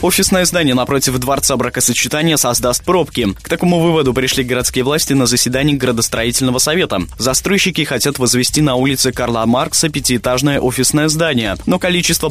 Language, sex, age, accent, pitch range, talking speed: Russian, male, 20-39, native, 125-155 Hz, 140 wpm